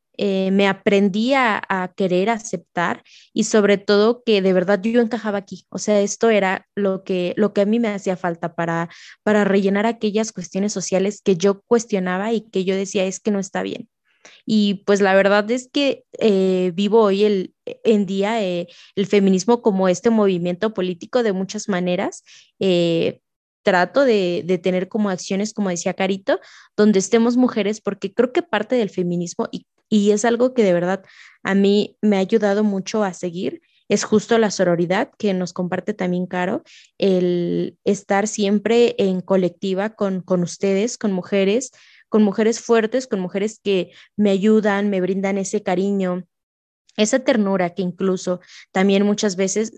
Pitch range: 190-220 Hz